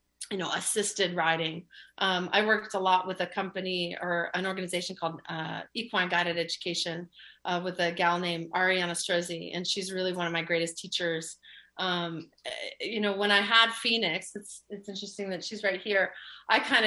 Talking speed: 180 wpm